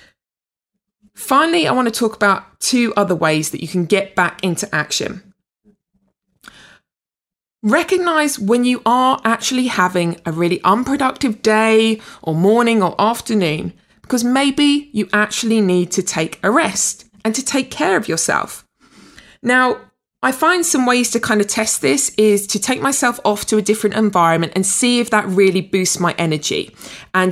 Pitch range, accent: 190-235 Hz, British